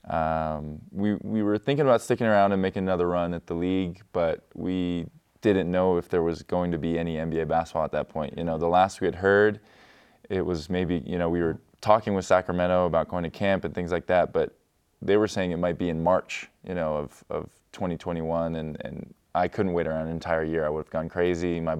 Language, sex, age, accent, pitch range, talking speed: English, male, 20-39, American, 80-90 Hz, 235 wpm